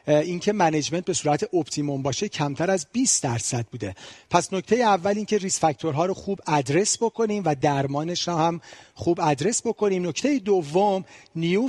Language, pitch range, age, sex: Persian, 145-180 Hz, 40-59, male